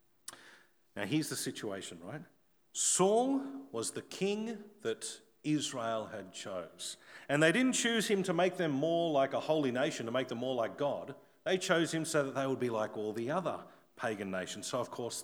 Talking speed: 195 wpm